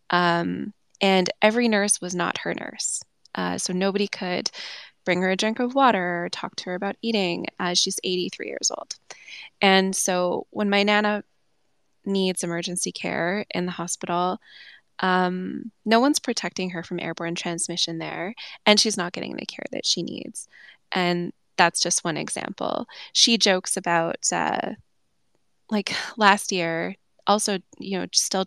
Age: 20-39